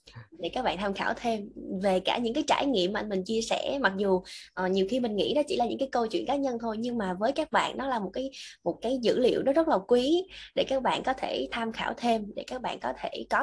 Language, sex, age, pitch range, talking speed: Vietnamese, female, 20-39, 180-240 Hz, 290 wpm